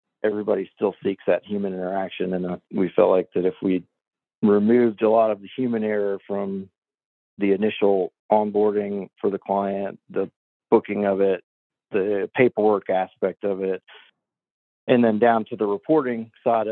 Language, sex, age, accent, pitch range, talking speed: English, male, 50-69, American, 95-110 Hz, 160 wpm